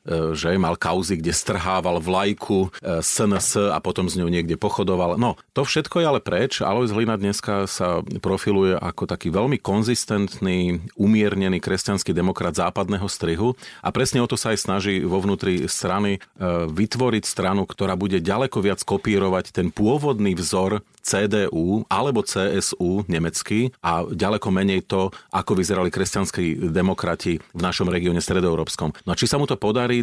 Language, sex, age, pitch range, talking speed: Slovak, male, 40-59, 90-105 Hz, 150 wpm